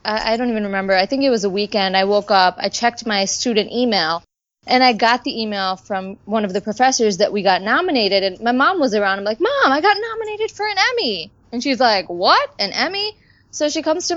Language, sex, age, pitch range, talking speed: English, female, 20-39, 195-260 Hz, 235 wpm